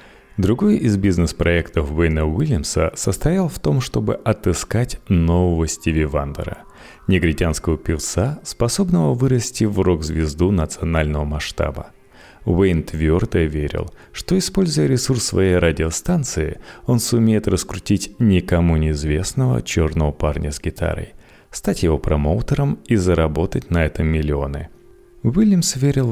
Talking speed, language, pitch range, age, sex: 110 wpm, Russian, 80-115 Hz, 30-49, male